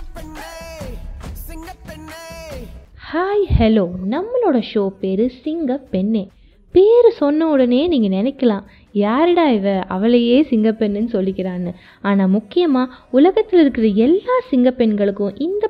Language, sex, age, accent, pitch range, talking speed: Tamil, female, 20-39, native, 200-295 Hz, 90 wpm